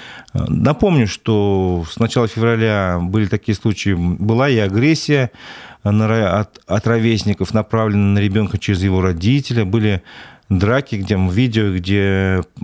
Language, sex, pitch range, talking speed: Russian, male, 95-120 Hz, 115 wpm